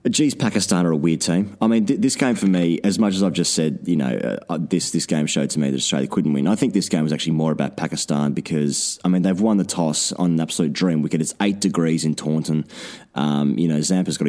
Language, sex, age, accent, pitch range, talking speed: English, male, 20-39, Australian, 80-105 Hz, 260 wpm